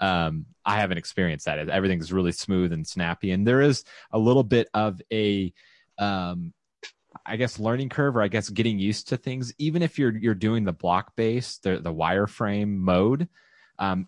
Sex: male